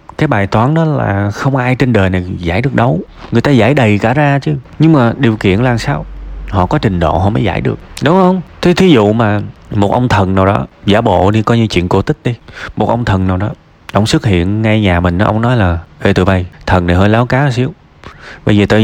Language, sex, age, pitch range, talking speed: Vietnamese, male, 20-39, 90-125 Hz, 260 wpm